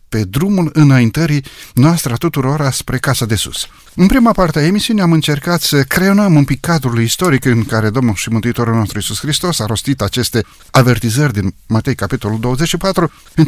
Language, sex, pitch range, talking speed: Romanian, male, 120-165 Hz, 180 wpm